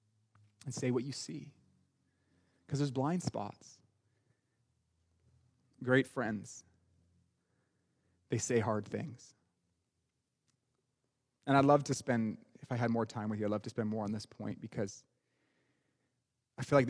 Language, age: English, 30-49